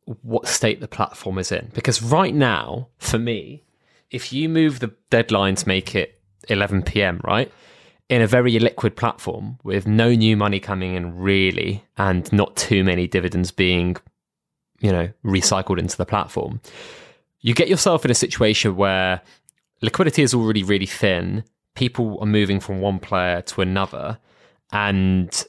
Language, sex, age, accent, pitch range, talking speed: English, male, 20-39, British, 95-115 Hz, 155 wpm